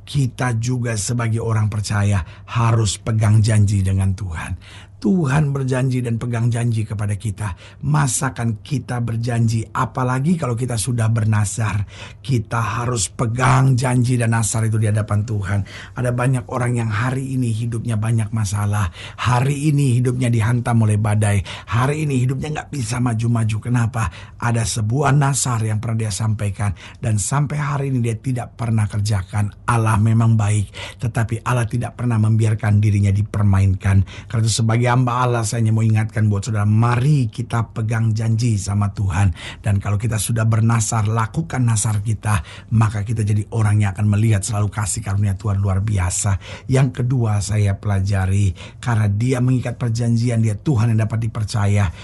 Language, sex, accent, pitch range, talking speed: Indonesian, male, native, 105-120 Hz, 150 wpm